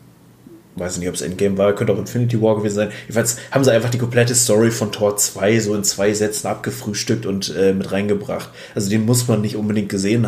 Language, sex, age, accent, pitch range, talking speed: German, male, 30-49, German, 100-115 Hz, 220 wpm